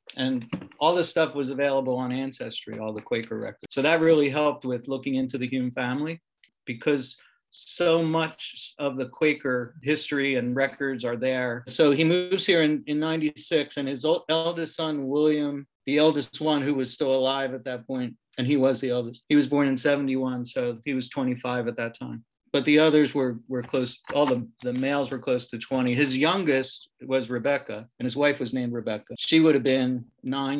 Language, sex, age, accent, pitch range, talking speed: English, male, 40-59, American, 125-150 Hz, 200 wpm